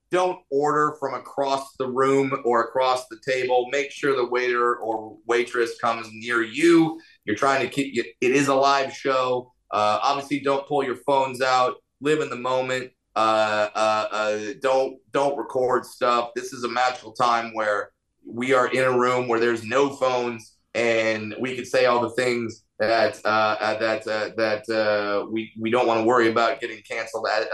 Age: 30-49